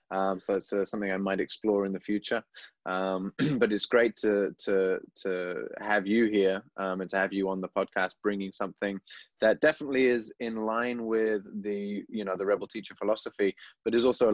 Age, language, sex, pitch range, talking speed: 20-39, English, male, 100-115 Hz, 195 wpm